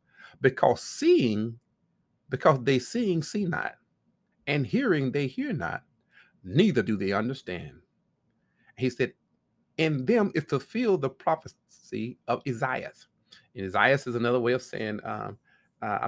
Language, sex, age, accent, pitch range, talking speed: English, male, 40-59, American, 120-180 Hz, 135 wpm